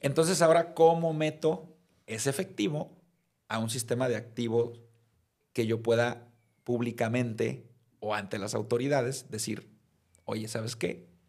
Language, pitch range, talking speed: Spanish, 110-135 Hz, 120 wpm